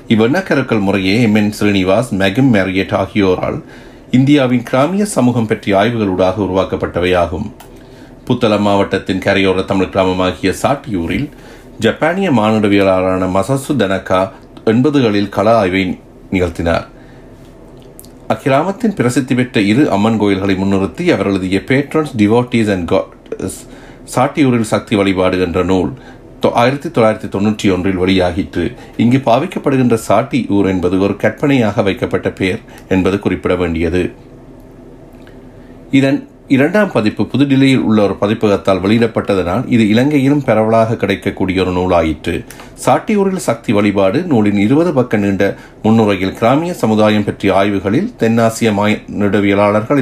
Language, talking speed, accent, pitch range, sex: Tamil, 105 wpm, native, 95-120 Hz, male